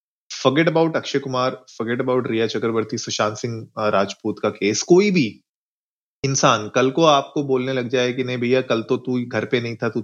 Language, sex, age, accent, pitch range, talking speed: Hindi, male, 30-49, native, 115-145 Hz, 195 wpm